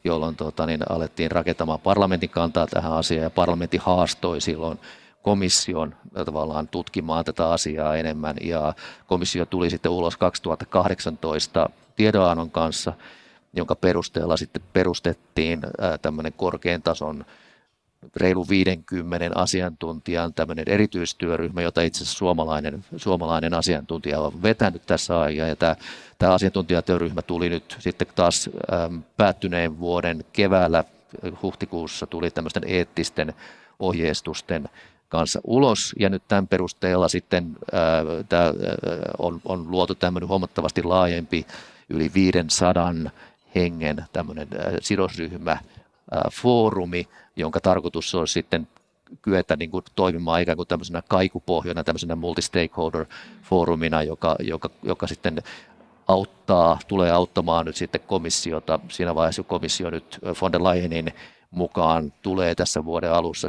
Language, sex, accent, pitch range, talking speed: Finnish, male, native, 80-90 Hz, 110 wpm